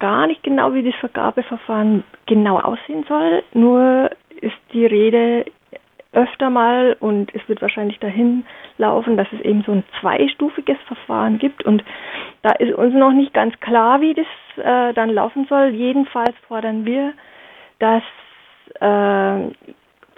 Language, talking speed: German, 145 wpm